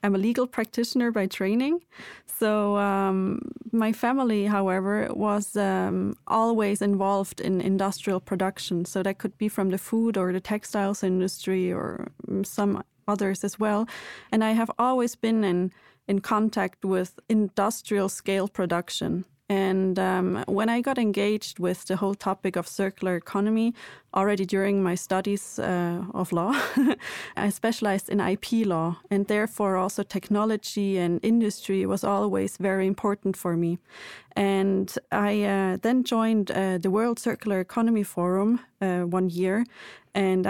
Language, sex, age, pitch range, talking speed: English, female, 20-39, 190-215 Hz, 145 wpm